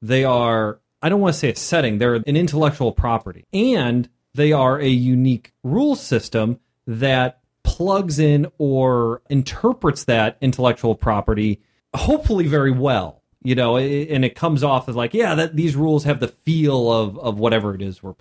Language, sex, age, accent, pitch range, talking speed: English, male, 30-49, American, 120-185 Hz, 175 wpm